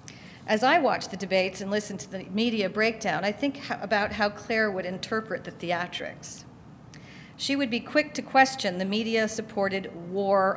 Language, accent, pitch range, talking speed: English, American, 195-250 Hz, 170 wpm